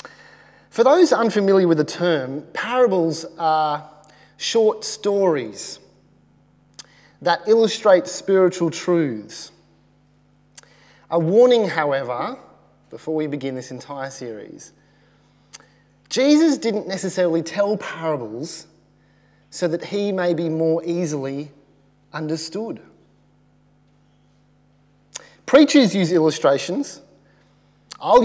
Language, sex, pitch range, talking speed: English, male, 140-195 Hz, 85 wpm